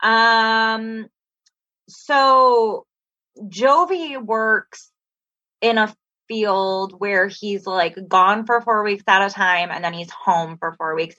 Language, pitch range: English, 180-225 Hz